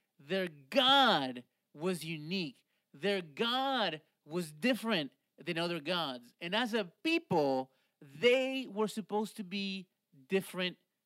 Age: 40-59